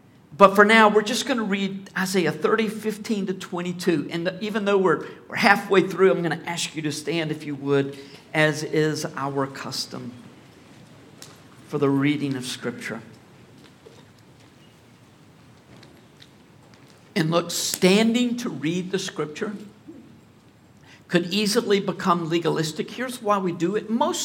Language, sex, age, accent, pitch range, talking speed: English, male, 50-69, American, 150-215 Hz, 140 wpm